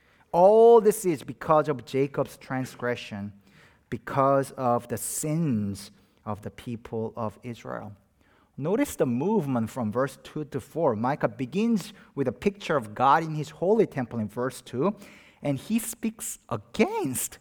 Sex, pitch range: male, 115-180 Hz